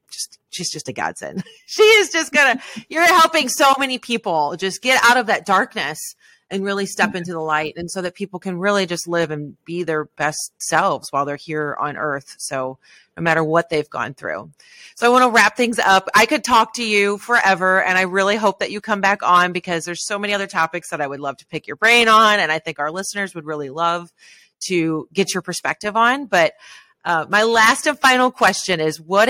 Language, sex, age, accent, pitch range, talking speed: English, female, 30-49, American, 160-225 Hz, 225 wpm